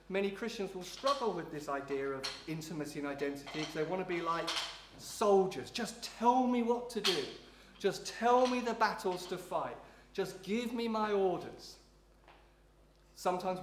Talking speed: 165 wpm